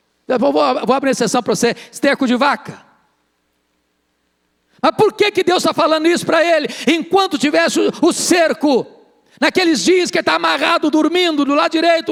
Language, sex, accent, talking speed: Portuguese, male, Brazilian, 170 wpm